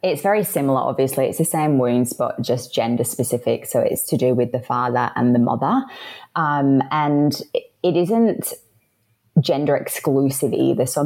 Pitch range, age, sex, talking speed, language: 130-150 Hz, 30-49, female, 165 wpm, English